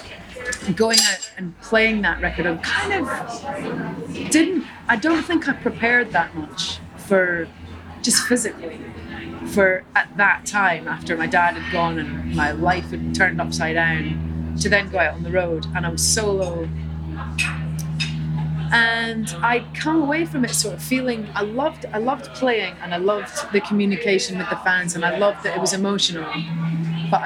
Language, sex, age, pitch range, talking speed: English, female, 30-49, 170-215 Hz, 165 wpm